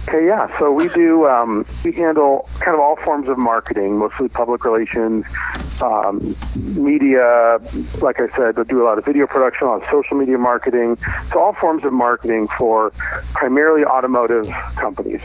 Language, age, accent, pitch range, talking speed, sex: English, 50-69, American, 110-135 Hz, 175 wpm, male